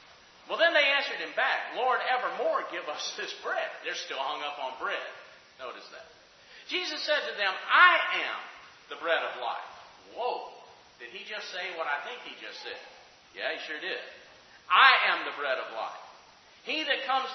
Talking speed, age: 185 wpm, 40-59